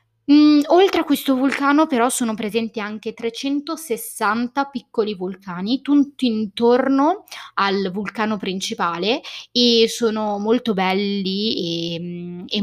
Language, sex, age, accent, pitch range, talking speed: Italian, female, 20-39, native, 180-230 Hz, 105 wpm